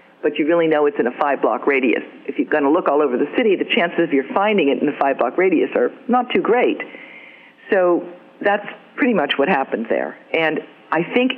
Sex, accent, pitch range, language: female, American, 135-185 Hz, English